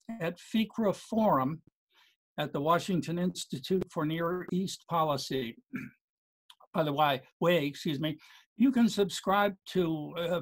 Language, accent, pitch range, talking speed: English, American, 145-185 Hz, 120 wpm